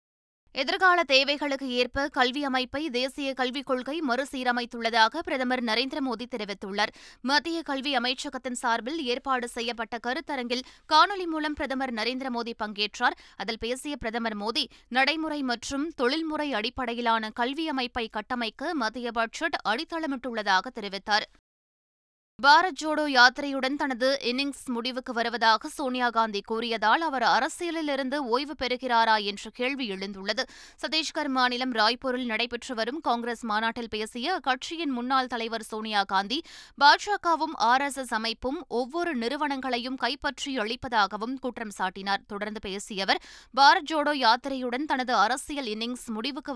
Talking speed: 110 wpm